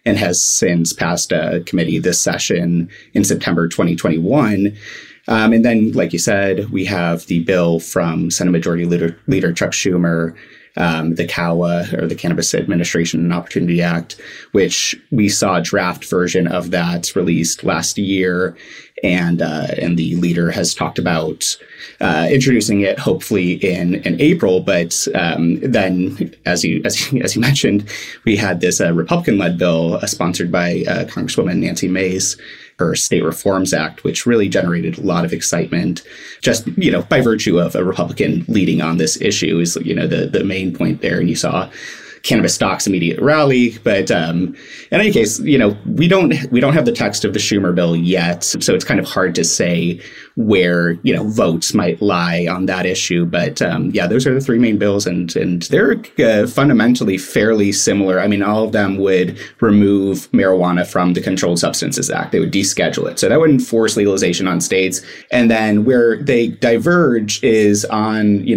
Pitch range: 85-105 Hz